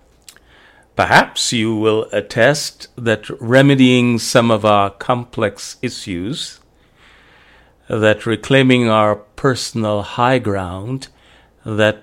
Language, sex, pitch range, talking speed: English, male, 100-120 Hz, 90 wpm